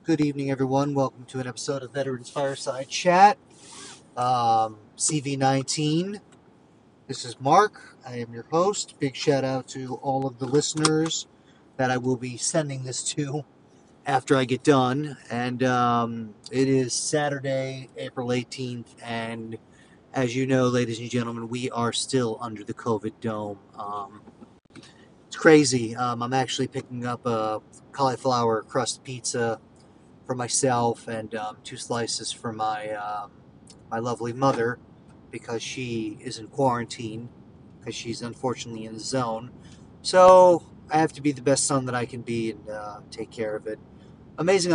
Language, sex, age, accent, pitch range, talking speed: English, male, 30-49, American, 115-135 Hz, 150 wpm